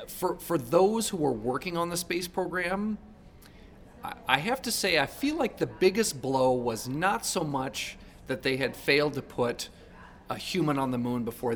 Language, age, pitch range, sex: English, 40-59, 125-170 Hz, male